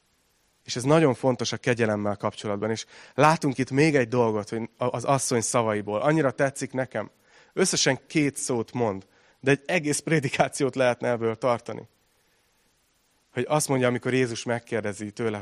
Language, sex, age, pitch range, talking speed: Hungarian, male, 30-49, 110-135 Hz, 150 wpm